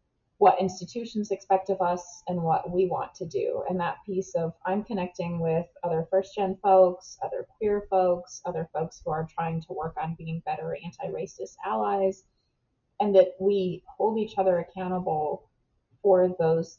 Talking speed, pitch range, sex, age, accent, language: 160 wpm, 175-205 Hz, female, 20-39, American, English